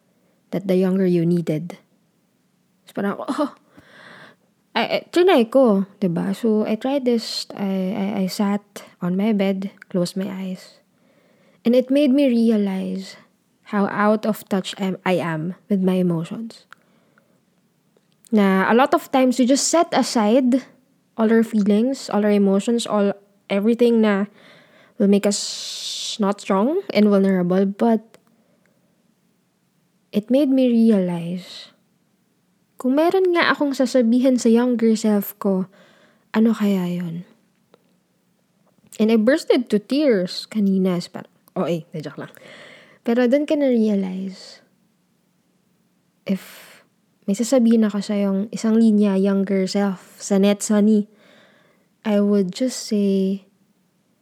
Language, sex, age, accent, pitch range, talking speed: Filipino, female, 20-39, native, 195-225 Hz, 125 wpm